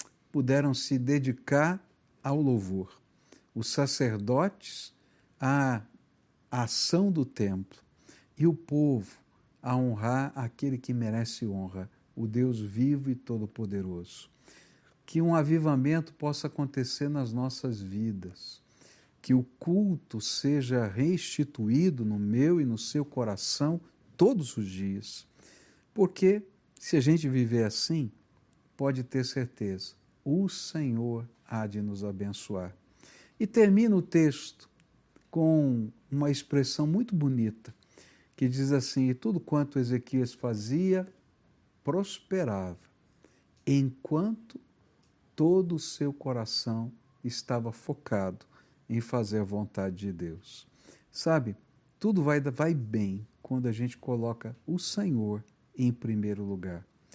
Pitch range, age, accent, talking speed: 110-150 Hz, 60-79, Brazilian, 110 wpm